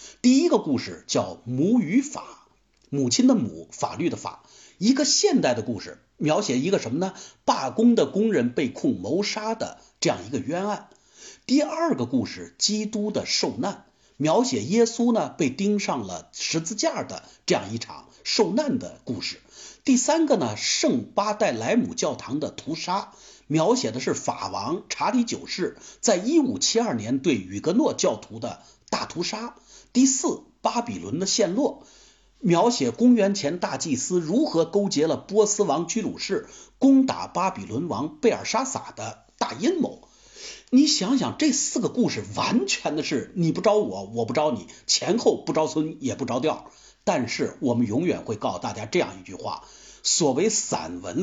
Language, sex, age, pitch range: Chinese, male, 50-69, 165-265 Hz